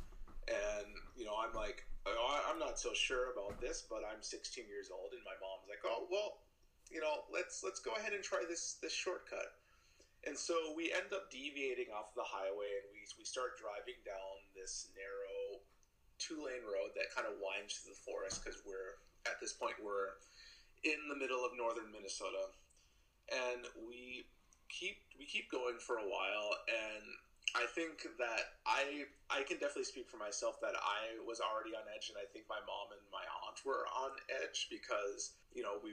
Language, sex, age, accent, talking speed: English, male, 30-49, American, 190 wpm